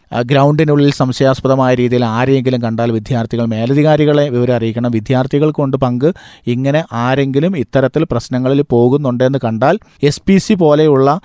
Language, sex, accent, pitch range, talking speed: Malayalam, male, native, 130-155 Hz, 115 wpm